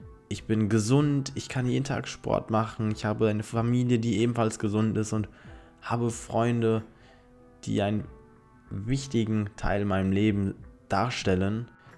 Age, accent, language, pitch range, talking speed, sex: 20-39, German, German, 100-120 Hz, 135 wpm, male